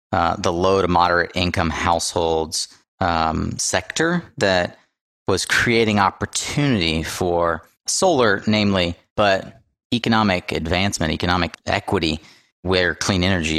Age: 30-49